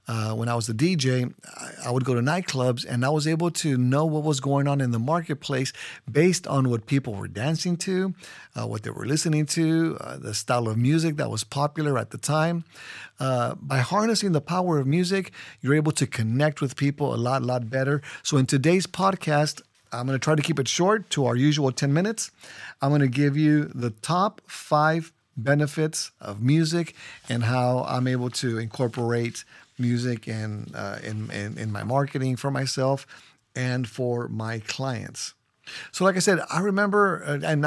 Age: 50-69